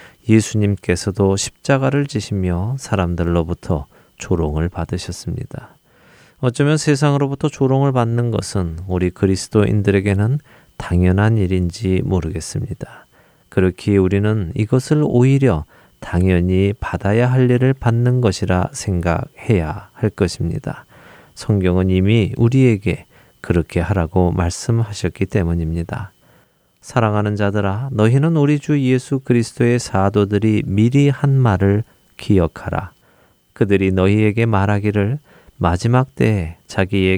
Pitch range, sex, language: 95-125 Hz, male, Korean